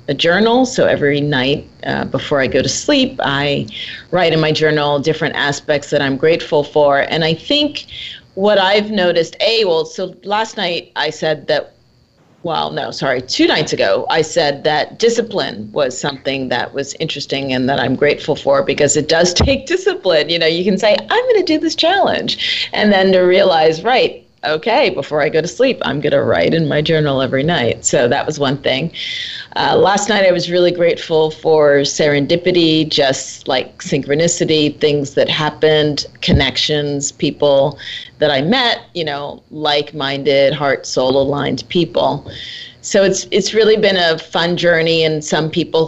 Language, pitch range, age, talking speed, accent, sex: English, 145-200 Hz, 40-59, 175 wpm, American, female